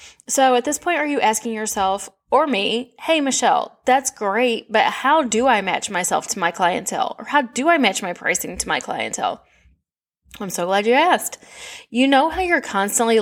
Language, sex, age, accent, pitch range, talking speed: English, female, 10-29, American, 205-275 Hz, 195 wpm